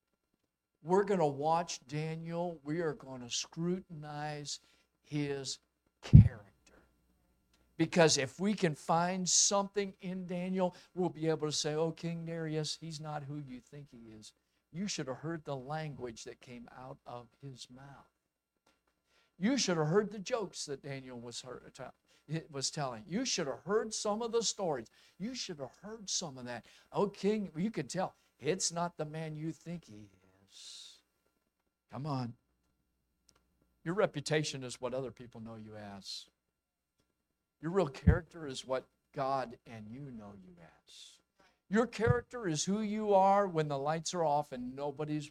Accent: American